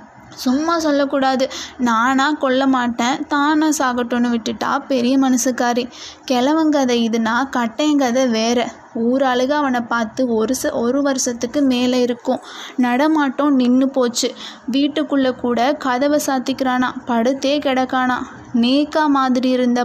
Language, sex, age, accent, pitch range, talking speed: Tamil, female, 20-39, native, 245-280 Hz, 110 wpm